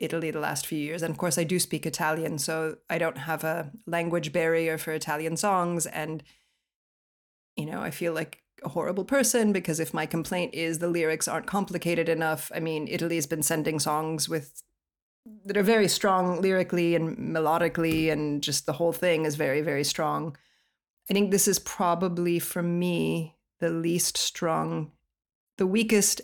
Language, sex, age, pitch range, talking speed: English, female, 30-49, 160-185 Hz, 175 wpm